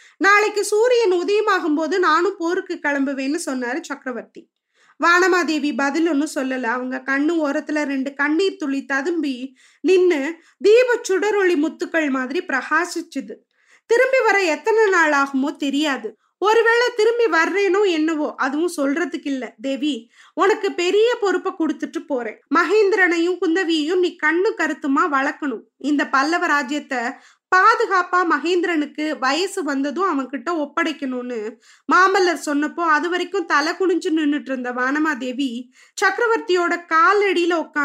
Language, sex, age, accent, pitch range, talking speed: Tamil, female, 20-39, native, 280-370 Hz, 115 wpm